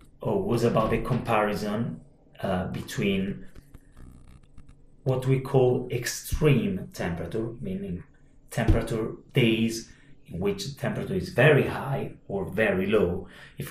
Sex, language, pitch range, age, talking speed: male, English, 115-140 Hz, 30-49, 115 wpm